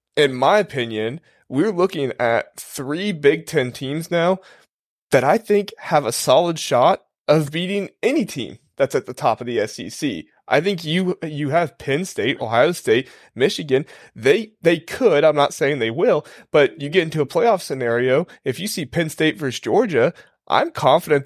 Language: English